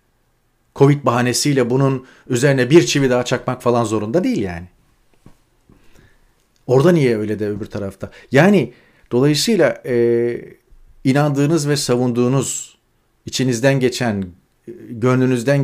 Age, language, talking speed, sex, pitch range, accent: 40-59, Turkish, 105 wpm, male, 115-140 Hz, native